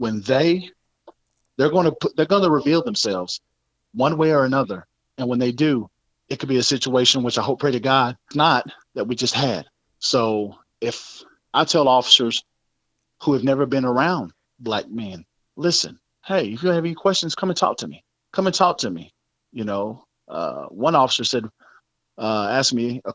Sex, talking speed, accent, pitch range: male, 195 wpm, American, 120-165 Hz